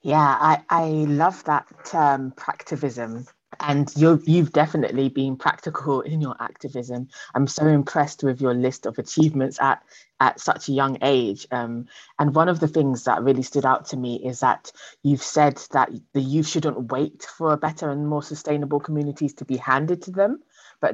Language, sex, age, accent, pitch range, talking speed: English, female, 20-39, British, 130-155 Hz, 180 wpm